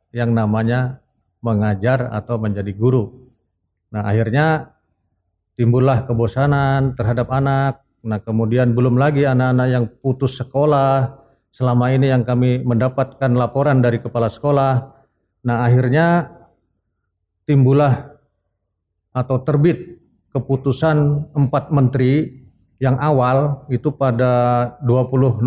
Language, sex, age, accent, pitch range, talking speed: Indonesian, male, 40-59, native, 115-140 Hz, 100 wpm